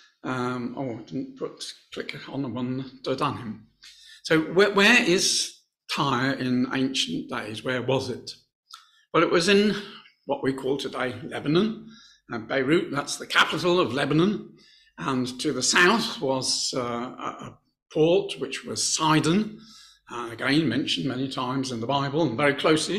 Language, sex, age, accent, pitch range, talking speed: English, male, 50-69, British, 125-170 Hz, 155 wpm